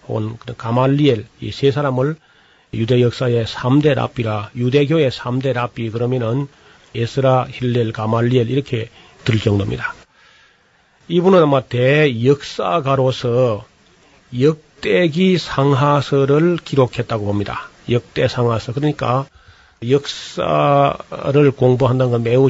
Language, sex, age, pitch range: Korean, male, 40-59, 120-150 Hz